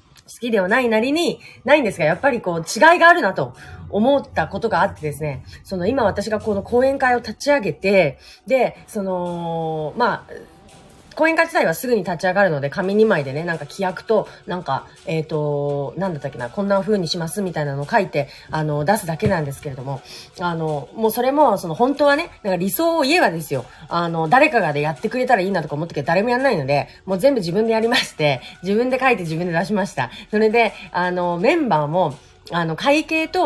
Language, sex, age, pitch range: Japanese, female, 30-49, 155-225 Hz